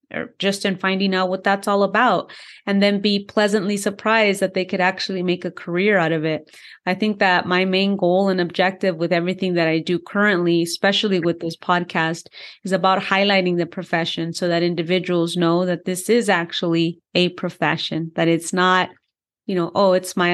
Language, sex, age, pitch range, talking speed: English, female, 30-49, 170-200 Hz, 190 wpm